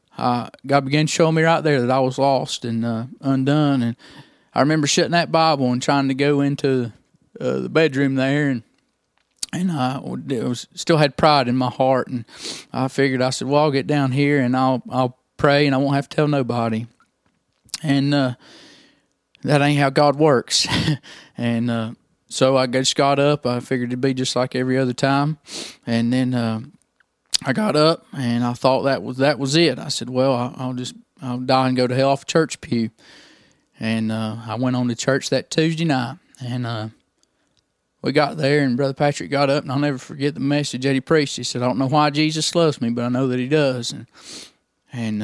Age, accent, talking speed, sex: 20-39, American, 210 wpm, male